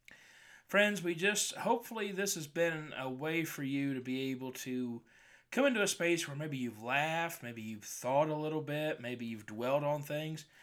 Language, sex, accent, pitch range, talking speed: English, male, American, 135-200 Hz, 190 wpm